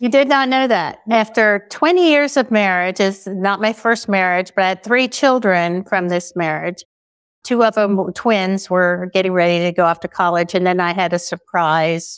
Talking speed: 200 wpm